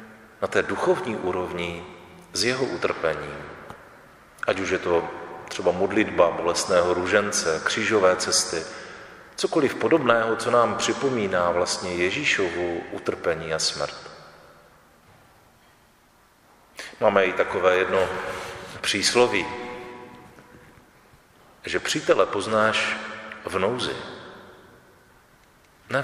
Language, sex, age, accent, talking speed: Czech, male, 40-59, native, 90 wpm